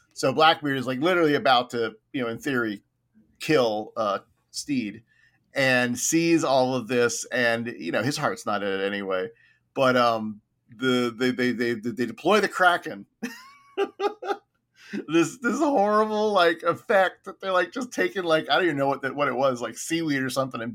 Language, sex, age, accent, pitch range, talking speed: English, male, 40-59, American, 115-160 Hz, 180 wpm